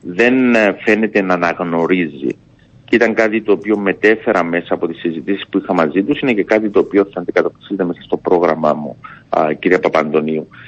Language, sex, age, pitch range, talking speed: Greek, male, 50-69, 100-130 Hz, 175 wpm